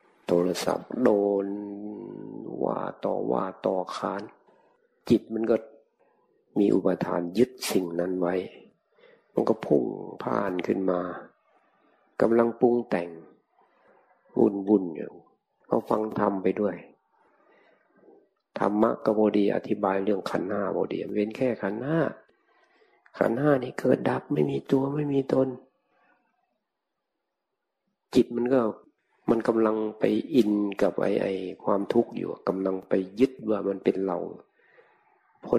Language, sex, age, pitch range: Thai, male, 60-79, 95-145 Hz